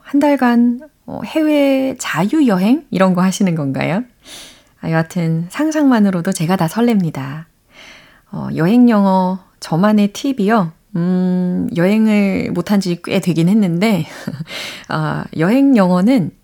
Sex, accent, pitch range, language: female, native, 160-230 Hz, Korean